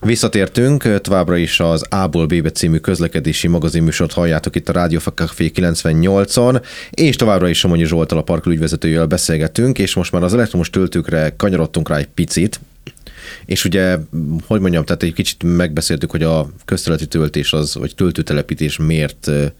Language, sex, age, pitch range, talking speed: Hungarian, male, 30-49, 75-95 Hz, 150 wpm